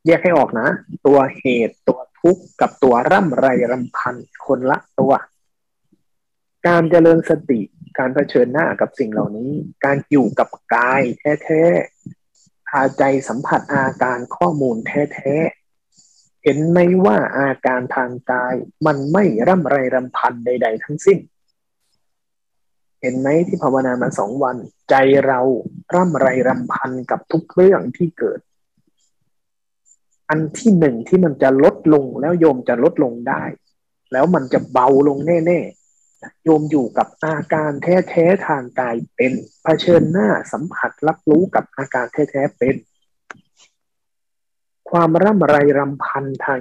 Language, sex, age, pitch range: Thai, male, 20-39, 130-170 Hz